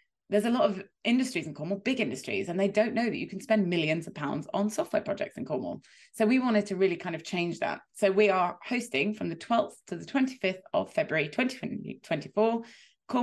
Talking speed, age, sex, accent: 215 wpm, 20-39, female, British